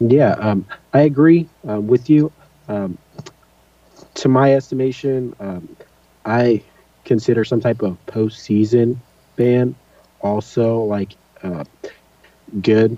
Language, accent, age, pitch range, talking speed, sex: English, American, 30-49, 100-125 Hz, 105 wpm, male